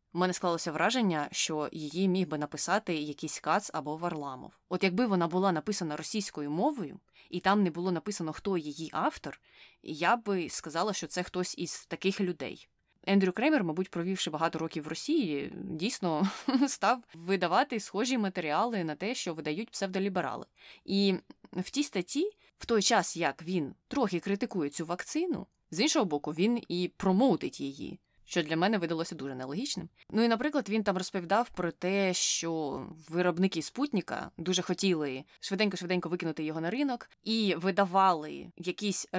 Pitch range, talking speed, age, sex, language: 160-195 Hz, 155 wpm, 20-39, female, Ukrainian